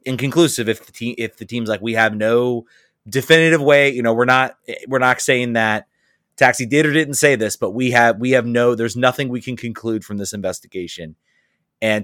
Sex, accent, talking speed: male, American, 210 wpm